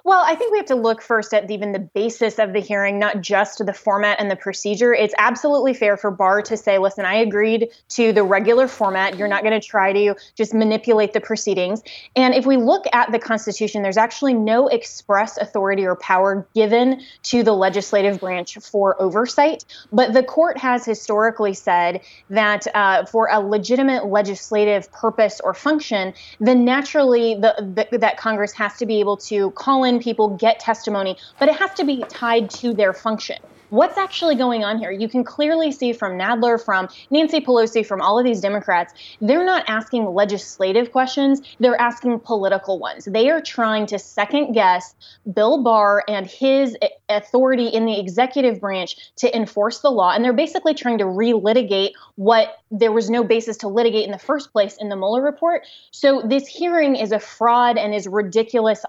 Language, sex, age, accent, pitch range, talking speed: English, female, 20-39, American, 205-250 Hz, 185 wpm